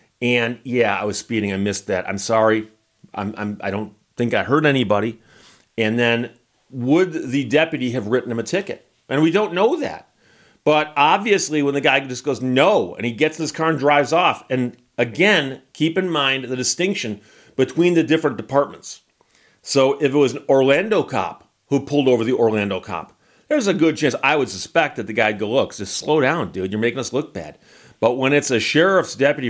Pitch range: 110-145 Hz